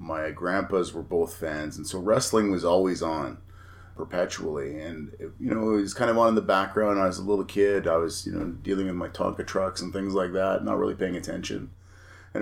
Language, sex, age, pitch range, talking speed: English, male, 30-49, 85-95 Hz, 220 wpm